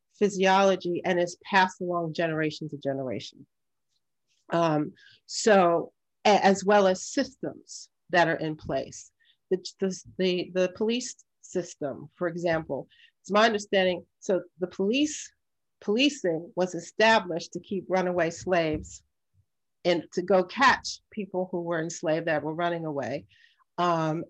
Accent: American